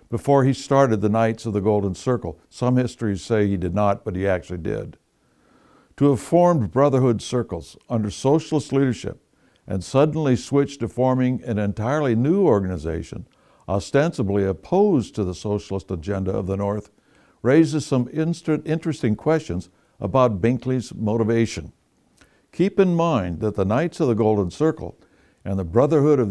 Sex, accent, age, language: male, American, 60-79, English